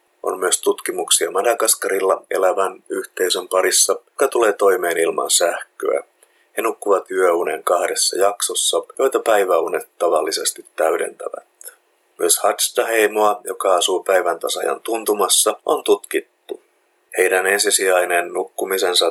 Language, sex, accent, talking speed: Finnish, male, native, 105 wpm